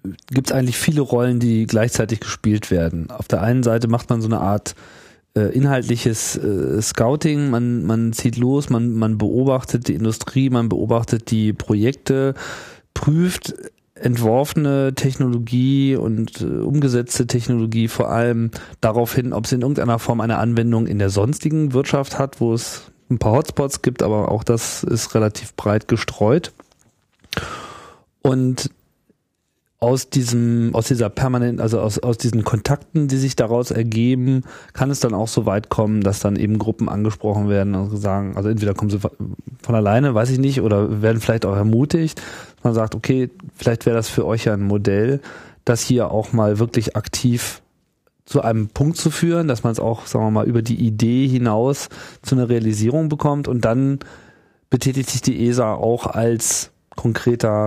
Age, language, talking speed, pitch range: 40-59, German, 170 wpm, 110-130 Hz